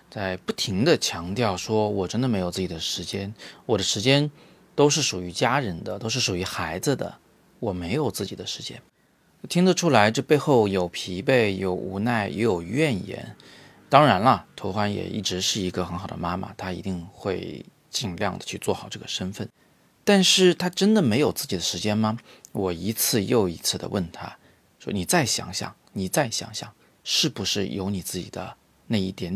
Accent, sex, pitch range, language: native, male, 95-135 Hz, Chinese